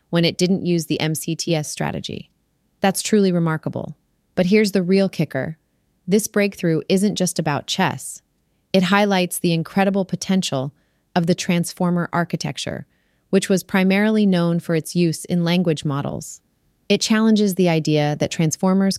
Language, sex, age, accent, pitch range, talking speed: English, female, 30-49, American, 155-190 Hz, 145 wpm